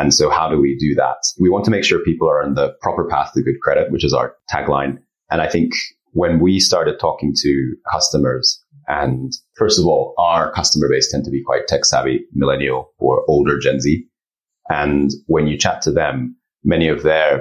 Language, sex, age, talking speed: English, male, 30-49, 210 wpm